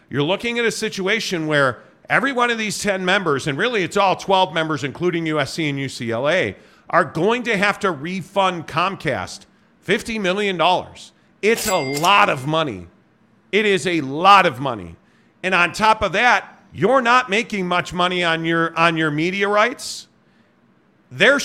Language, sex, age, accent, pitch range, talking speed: English, male, 50-69, American, 165-205 Hz, 160 wpm